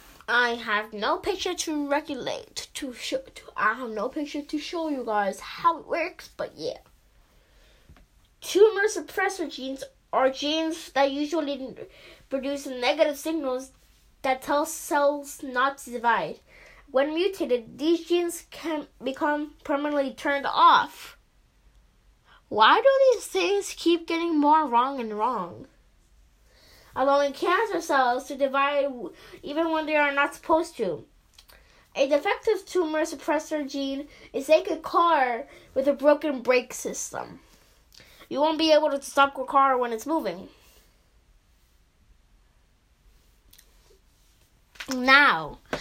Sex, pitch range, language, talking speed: female, 265-335 Hz, English, 125 wpm